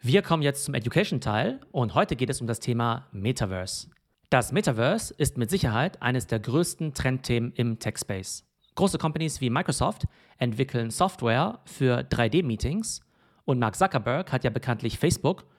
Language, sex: German, male